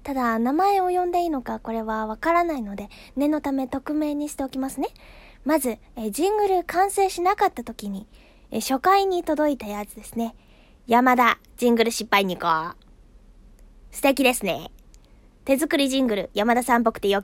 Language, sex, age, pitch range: Japanese, female, 20-39, 235-320 Hz